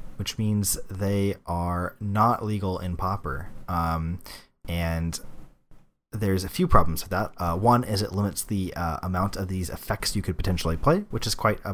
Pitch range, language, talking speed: 80-100 Hz, English, 180 wpm